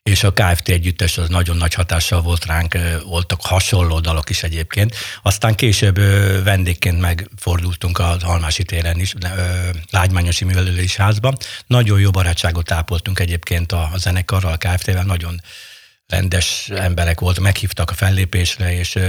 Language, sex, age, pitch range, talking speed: Hungarian, male, 60-79, 90-105 Hz, 140 wpm